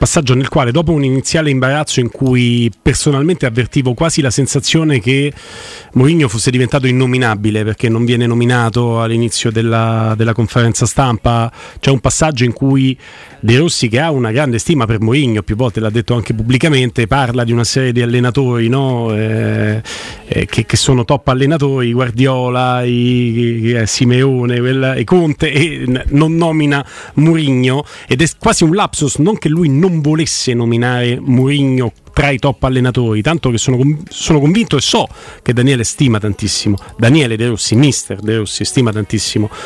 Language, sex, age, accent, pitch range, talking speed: Italian, male, 40-59, native, 115-145 Hz, 165 wpm